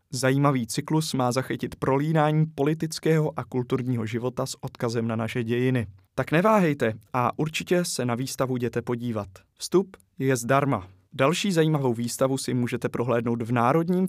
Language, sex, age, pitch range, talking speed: Czech, male, 20-39, 120-150 Hz, 145 wpm